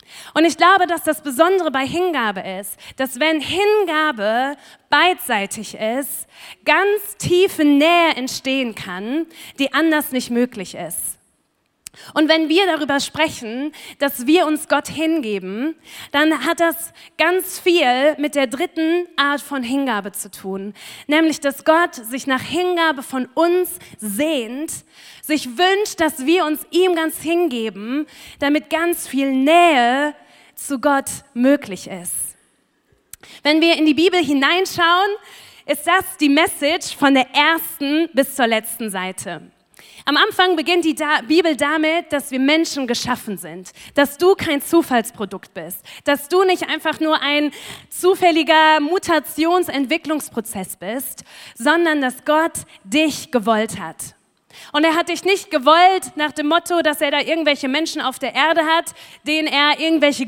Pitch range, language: 270-330 Hz, German